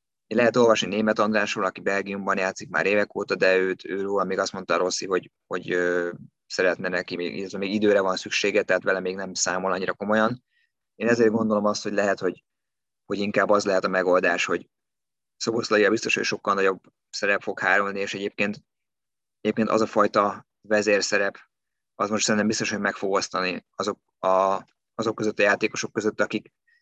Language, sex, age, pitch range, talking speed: Hungarian, male, 20-39, 95-105 Hz, 185 wpm